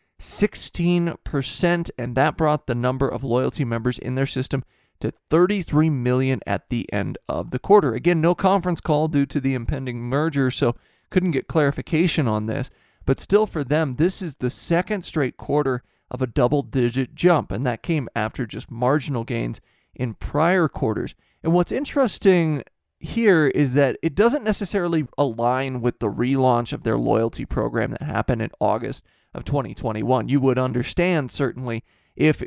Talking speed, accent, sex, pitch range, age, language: 160 wpm, American, male, 125-160 Hz, 20-39, English